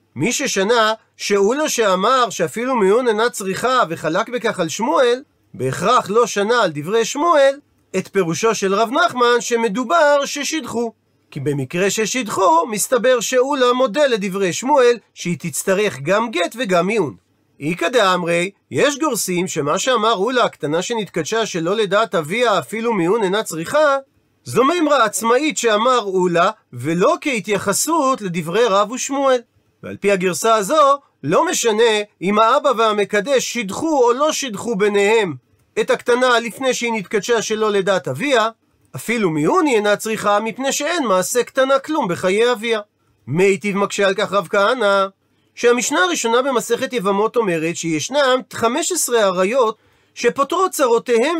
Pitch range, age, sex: 190-255 Hz, 40-59, male